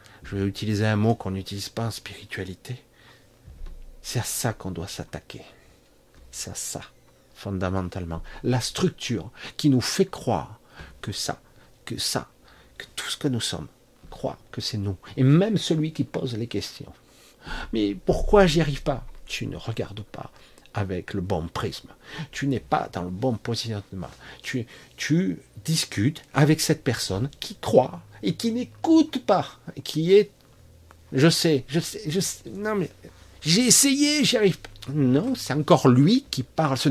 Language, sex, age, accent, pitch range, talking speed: French, male, 50-69, French, 100-150 Hz, 165 wpm